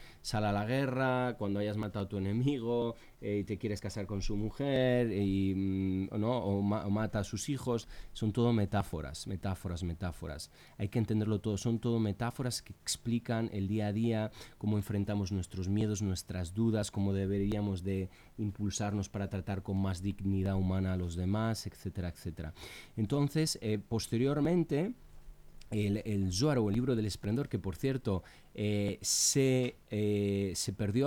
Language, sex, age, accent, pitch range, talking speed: Spanish, male, 30-49, Spanish, 95-115 Hz, 170 wpm